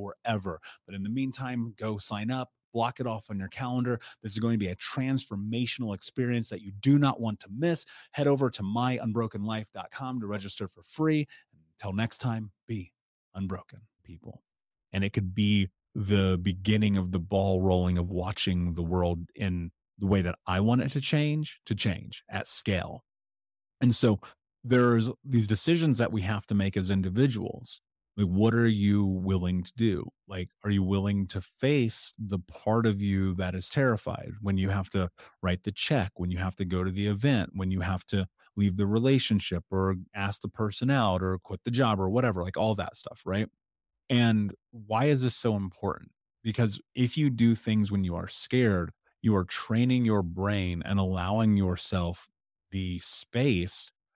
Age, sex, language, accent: 30-49, male, English, American